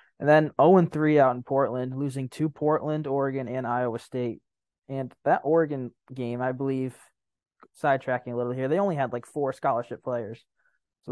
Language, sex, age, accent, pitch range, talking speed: English, male, 20-39, American, 125-155 Hz, 165 wpm